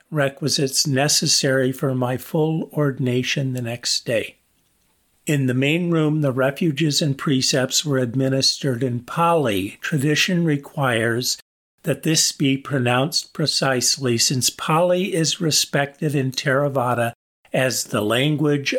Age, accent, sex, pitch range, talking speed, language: 50-69, American, male, 130-155 Hz, 120 wpm, English